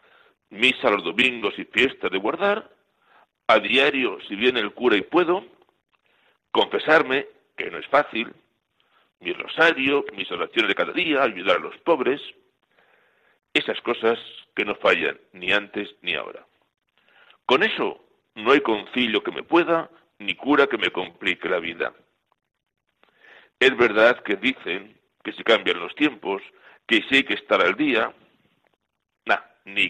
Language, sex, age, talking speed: Spanish, male, 60-79, 145 wpm